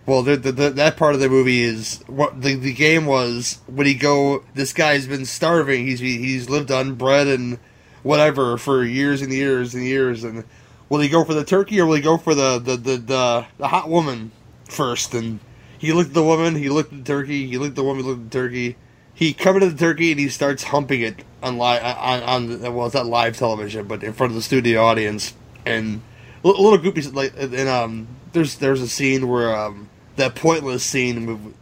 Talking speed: 230 wpm